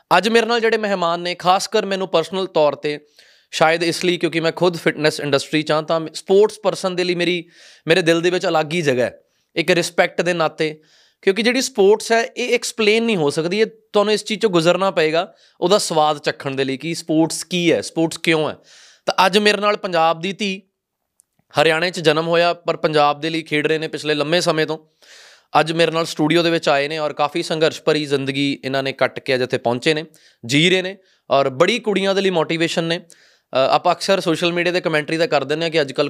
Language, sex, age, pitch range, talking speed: Punjabi, male, 20-39, 150-190 Hz, 190 wpm